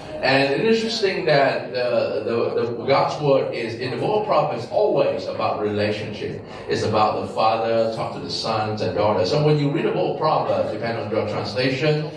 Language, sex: English, male